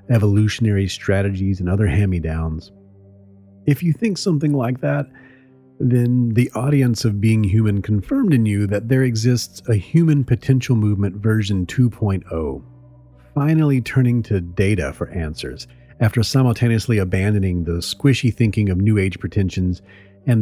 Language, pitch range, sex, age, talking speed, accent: English, 95-130 Hz, male, 40-59, 140 wpm, American